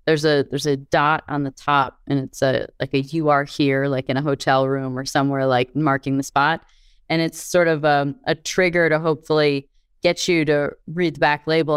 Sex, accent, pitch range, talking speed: female, American, 140-160 Hz, 220 wpm